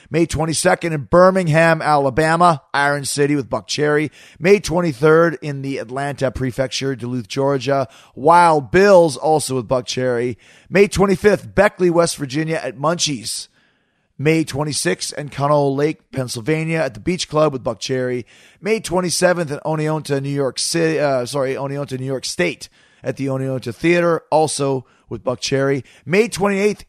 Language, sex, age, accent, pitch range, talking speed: English, male, 30-49, American, 130-165 Hz, 150 wpm